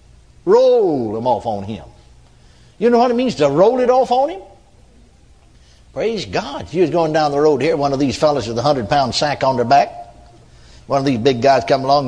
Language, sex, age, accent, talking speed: English, male, 60-79, American, 220 wpm